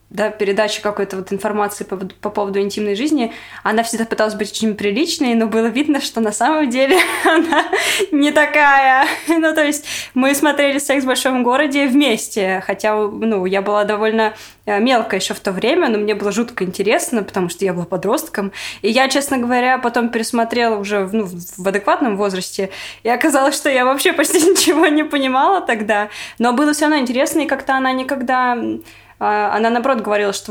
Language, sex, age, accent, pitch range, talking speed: Russian, female, 20-39, native, 210-260 Hz, 180 wpm